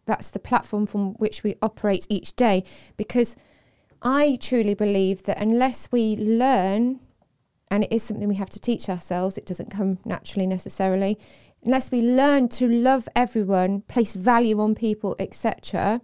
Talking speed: 155 wpm